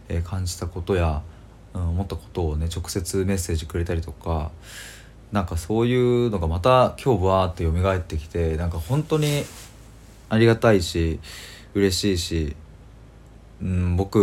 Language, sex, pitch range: Japanese, male, 85-110 Hz